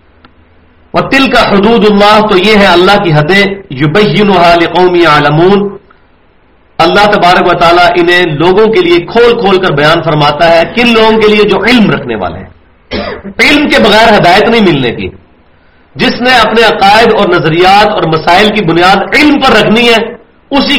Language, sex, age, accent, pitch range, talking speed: English, male, 40-59, Indian, 155-220 Hz, 165 wpm